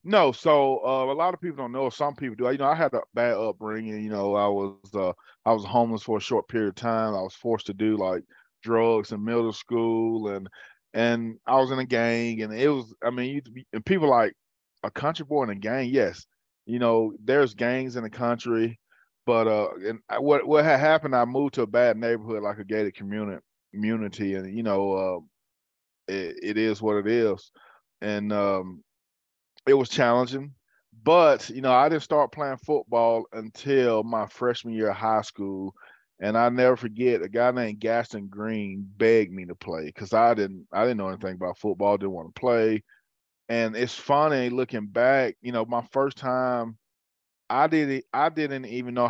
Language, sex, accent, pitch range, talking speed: English, male, American, 105-125 Hz, 200 wpm